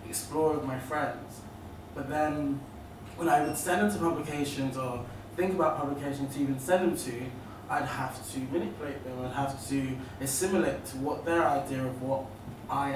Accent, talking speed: British, 175 wpm